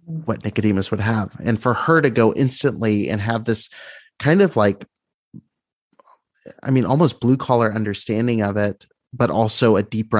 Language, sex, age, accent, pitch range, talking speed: English, male, 30-49, American, 100-120 Hz, 165 wpm